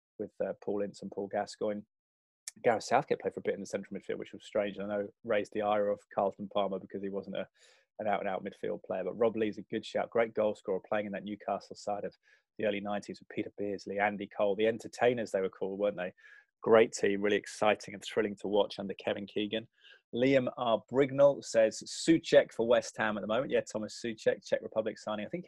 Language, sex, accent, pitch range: English, male, British, 100-140 Hz